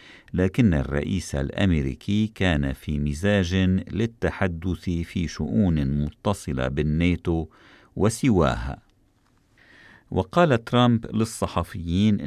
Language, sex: Arabic, male